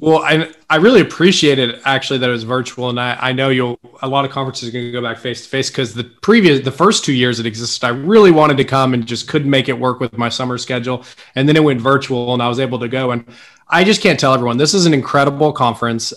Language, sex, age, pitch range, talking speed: English, male, 20-39, 125-150 Hz, 270 wpm